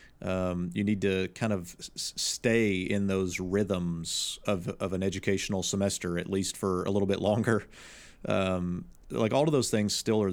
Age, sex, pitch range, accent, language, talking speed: 40-59, male, 95-110 Hz, American, English, 175 wpm